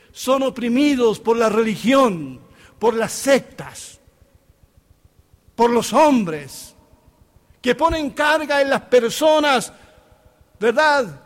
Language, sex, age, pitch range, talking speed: Spanish, male, 60-79, 185-270 Hz, 95 wpm